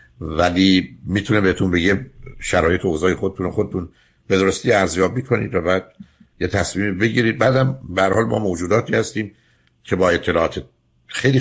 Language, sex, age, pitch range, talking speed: Persian, male, 60-79, 85-105 Hz, 145 wpm